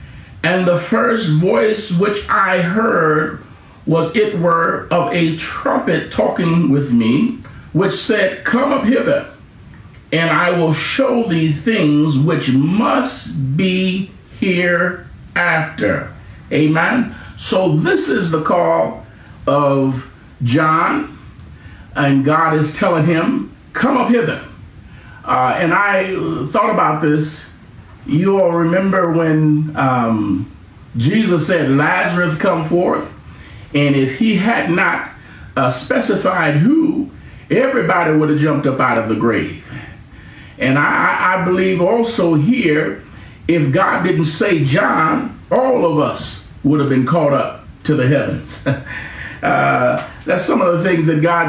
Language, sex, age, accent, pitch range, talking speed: English, male, 50-69, American, 140-190 Hz, 130 wpm